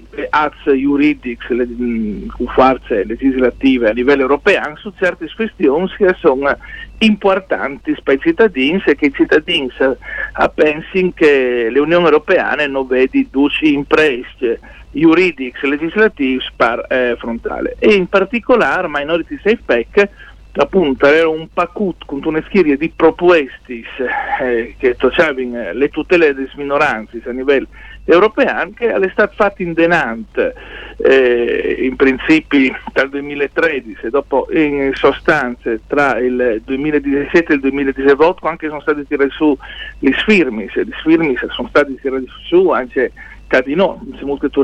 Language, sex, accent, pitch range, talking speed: Italian, male, native, 135-185 Hz, 130 wpm